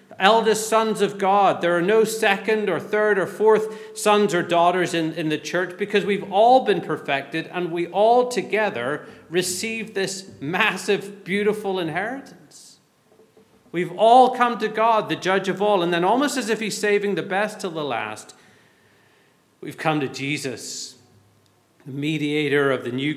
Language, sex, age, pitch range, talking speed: English, male, 40-59, 130-185 Hz, 165 wpm